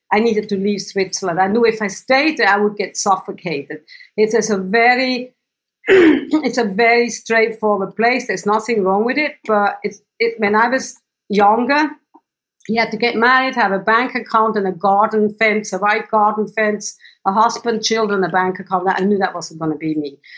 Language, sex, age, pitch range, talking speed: English, female, 50-69, 190-230 Hz, 195 wpm